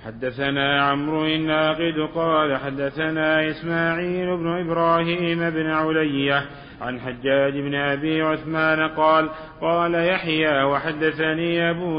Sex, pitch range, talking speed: male, 145-165 Hz, 100 wpm